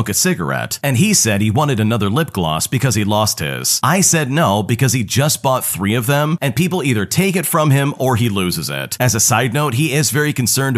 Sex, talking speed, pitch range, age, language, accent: male, 240 wpm, 110-155 Hz, 40-59, English, American